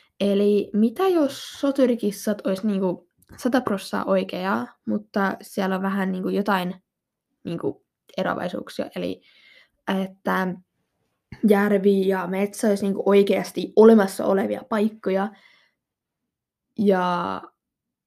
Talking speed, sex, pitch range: 95 wpm, female, 190-220 Hz